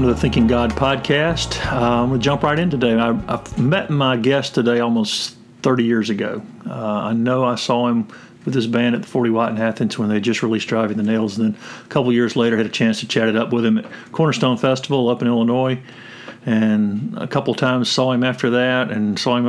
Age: 50-69